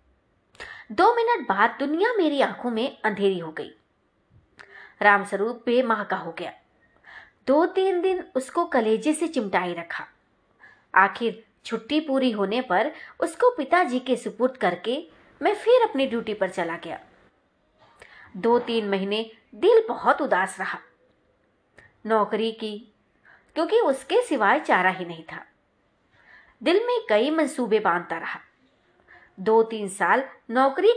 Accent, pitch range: native, 200-310 Hz